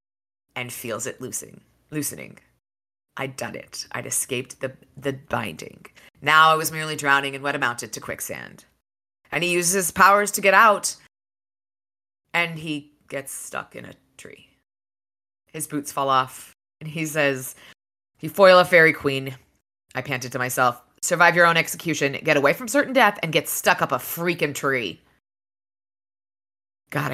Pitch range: 120-170 Hz